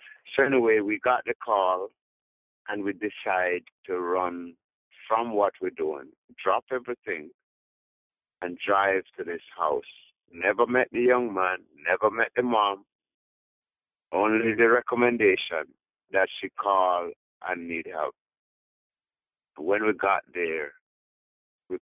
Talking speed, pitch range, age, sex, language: 125 wpm, 90-140 Hz, 60-79, male, English